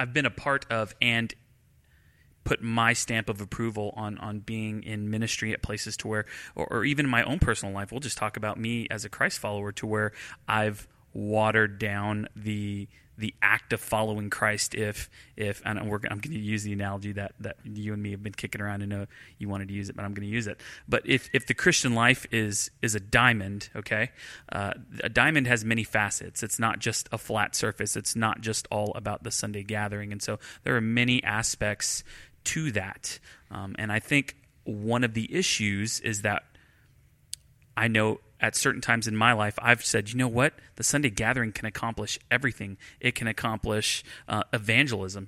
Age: 30-49